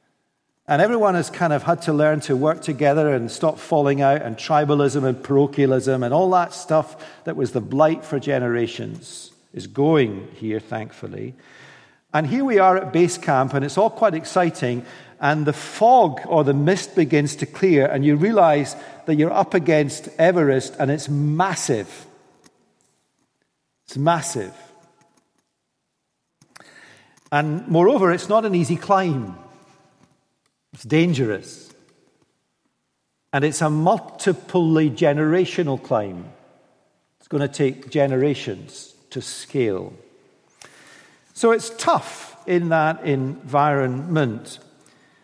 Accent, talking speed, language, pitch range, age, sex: British, 125 wpm, English, 140-175 Hz, 50-69, male